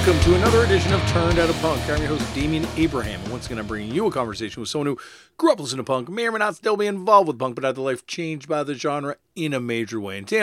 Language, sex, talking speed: English, male, 305 wpm